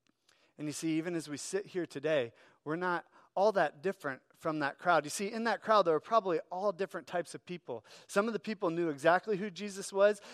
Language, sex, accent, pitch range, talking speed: English, male, American, 150-195 Hz, 225 wpm